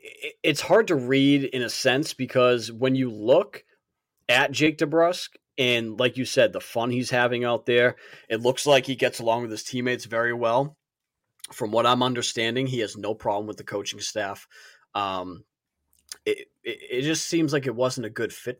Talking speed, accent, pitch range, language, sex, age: 190 wpm, American, 110-140 Hz, English, male, 20-39